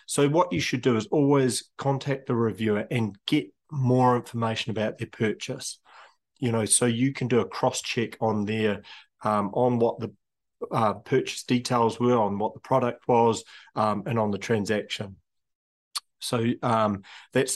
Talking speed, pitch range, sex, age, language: 165 wpm, 110-130 Hz, male, 30-49, English